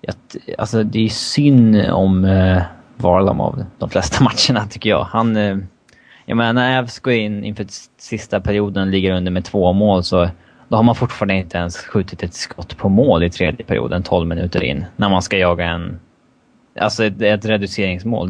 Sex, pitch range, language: male, 90-110 Hz, Swedish